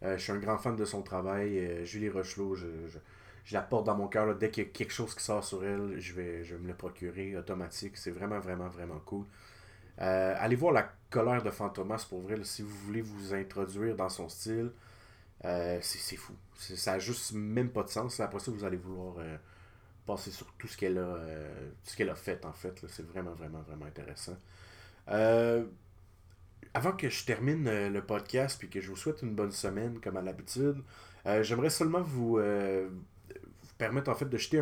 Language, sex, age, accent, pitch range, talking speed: French, male, 30-49, Canadian, 95-115 Hz, 220 wpm